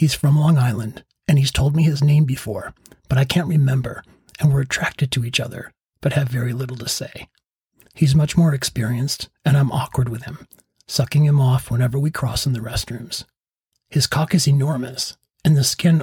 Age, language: 40-59, English